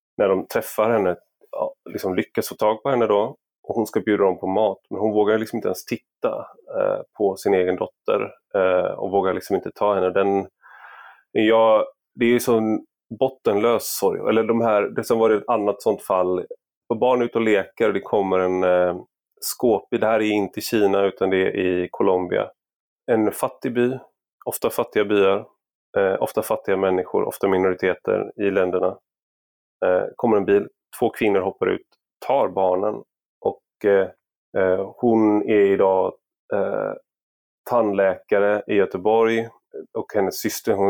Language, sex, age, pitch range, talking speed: Swedish, male, 30-49, 95-115 Hz, 160 wpm